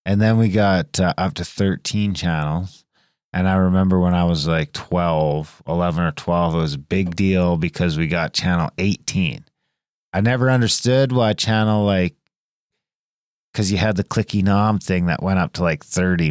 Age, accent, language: 30-49, American, English